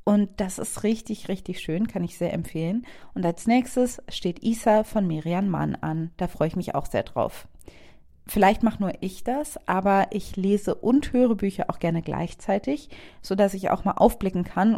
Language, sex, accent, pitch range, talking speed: German, female, German, 180-225 Hz, 190 wpm